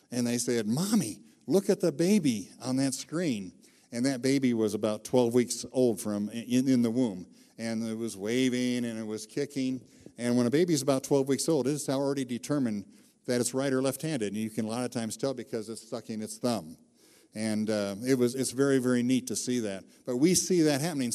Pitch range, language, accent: 115-135 Hz, English, American